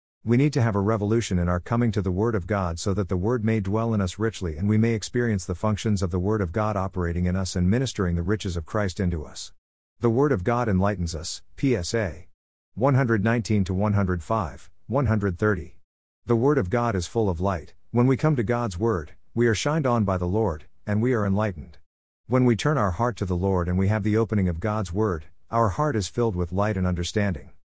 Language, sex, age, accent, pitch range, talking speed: English, male, 50-69, American, 90-115 Hz, 220 wpm